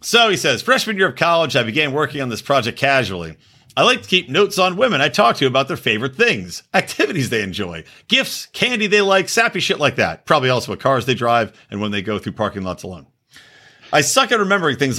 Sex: male